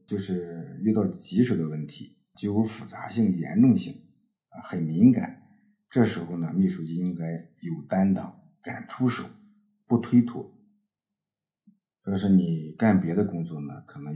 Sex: male